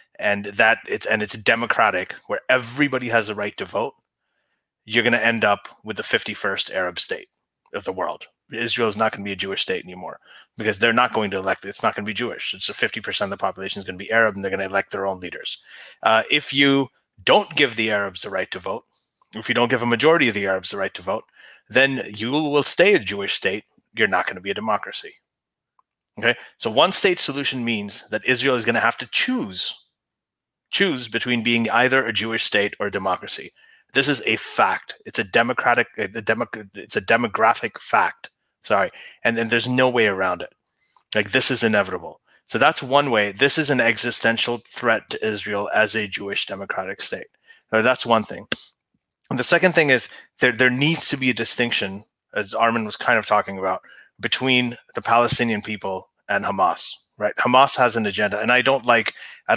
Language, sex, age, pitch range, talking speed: English, male, 30-49, 105-135 Hz, 210 wpm